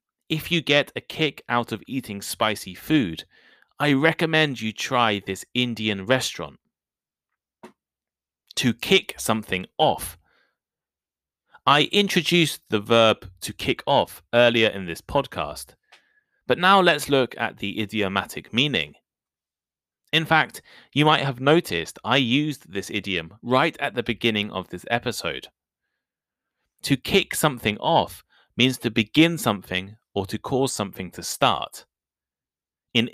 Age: 30-49